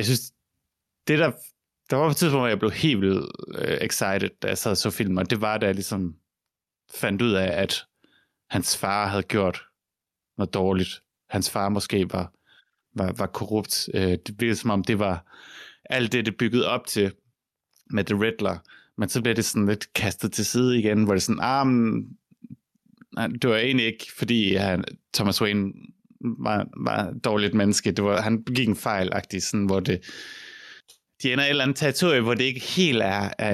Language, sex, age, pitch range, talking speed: Danish, male, 30-49, 100-115 Hz, 190 wpm